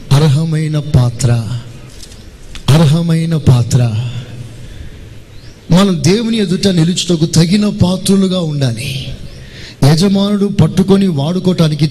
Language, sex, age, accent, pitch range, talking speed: Telugu, male, 30-49, native, 120-160 Hz, 65 wpm